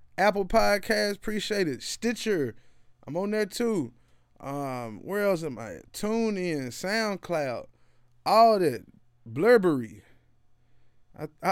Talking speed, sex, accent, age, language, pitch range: 110 wpm, male, American, 20-39, English, 120-195 Hz